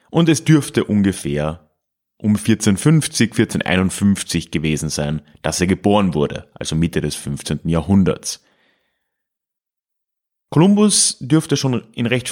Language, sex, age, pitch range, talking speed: German, male, 30-49, 90-130 Hz, 110 wpm